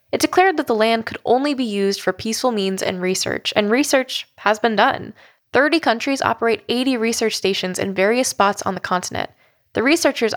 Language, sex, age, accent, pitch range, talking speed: English, female, 10-29, American, 185-230 Hz, 190 wpm